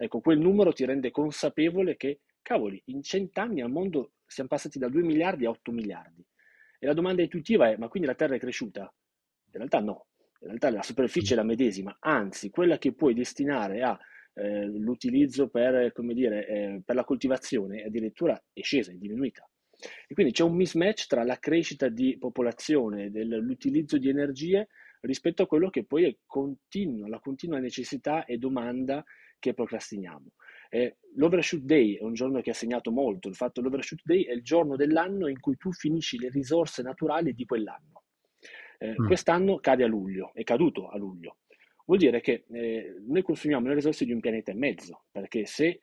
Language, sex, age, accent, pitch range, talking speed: Italian, male, 30-49, native, 120-160 Hz, 180 wpm